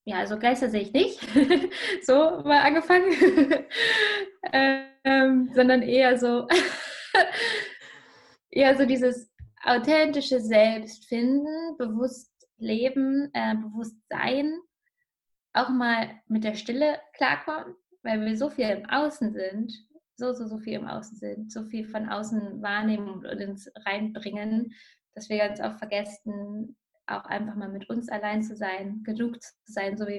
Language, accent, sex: German, German, female